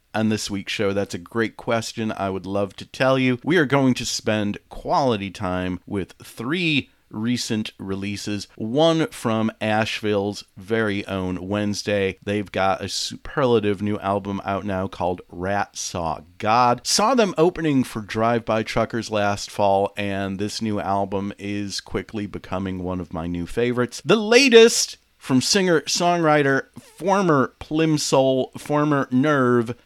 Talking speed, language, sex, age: 145 wpm, English, male, 40-59